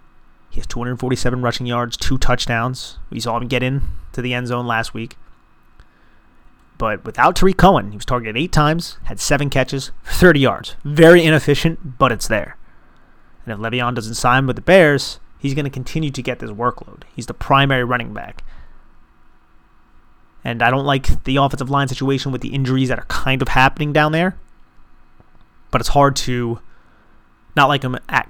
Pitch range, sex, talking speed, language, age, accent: 115-140 Hz, male, 180 wpm, English, 30-49, American